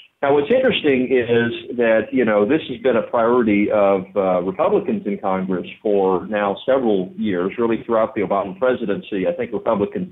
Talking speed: 170 wpm